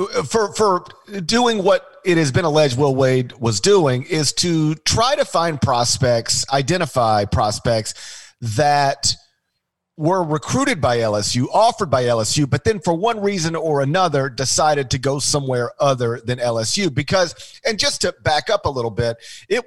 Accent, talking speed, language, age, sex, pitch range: American, 160 wpm, English, 40-59, male, 115-155 Hz